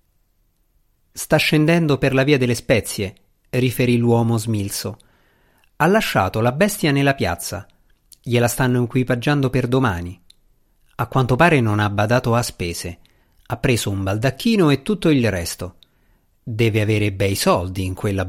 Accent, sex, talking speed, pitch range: native, male, 140 wpm, 100-140 Hz